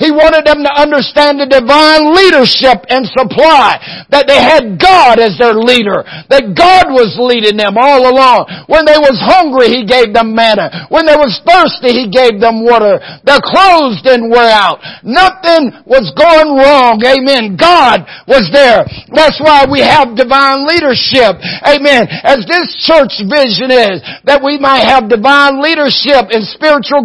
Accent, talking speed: American, 160 wpm